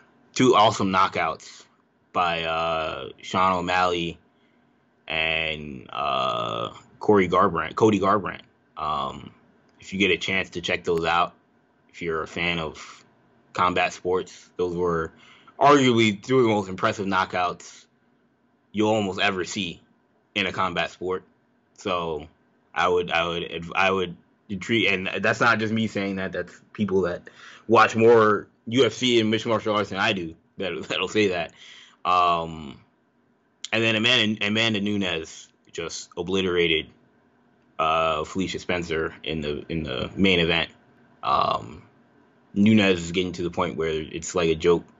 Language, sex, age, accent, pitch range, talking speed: English, male, 20-39, American, 85-105 Hz, 145 wpm